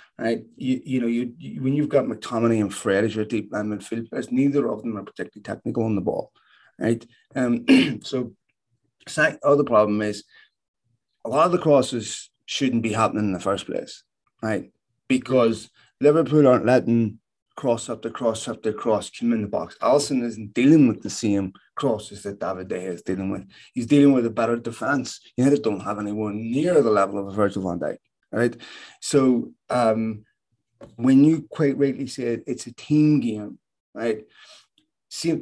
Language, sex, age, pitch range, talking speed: English, male, 30-49, 110-140 Hz, 185 wpm